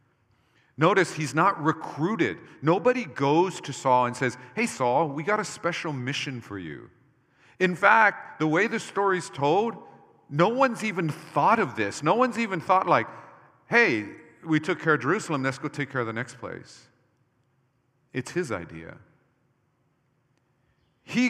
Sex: male